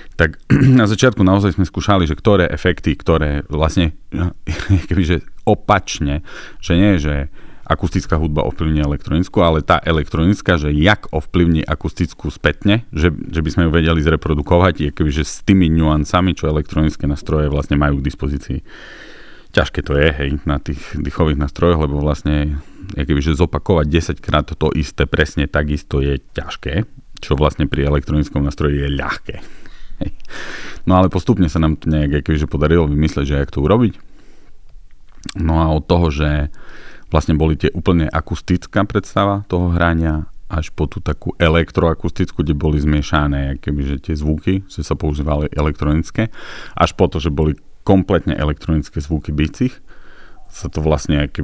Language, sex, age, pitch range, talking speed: Slovak, male, 40-59, 75-90 Hz, 155 wpm